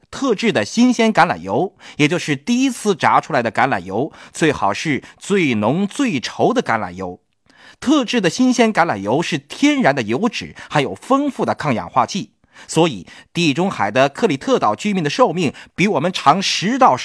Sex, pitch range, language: male, 145-235 Hz, Chinese